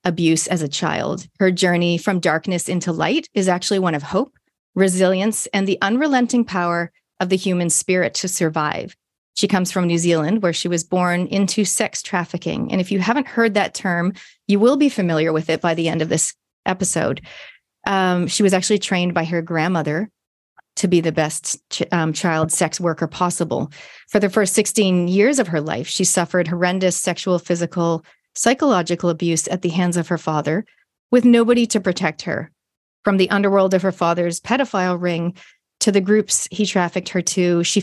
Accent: American